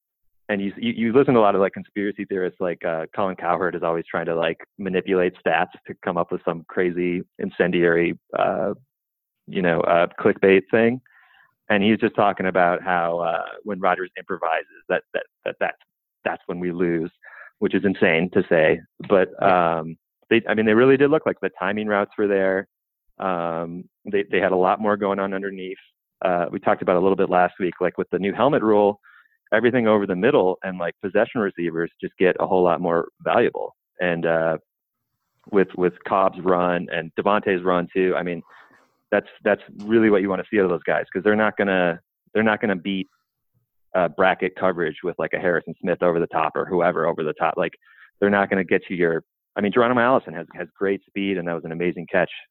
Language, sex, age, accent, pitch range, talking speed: English, male, 30-49, American, 85-100 Hz, 215 wpm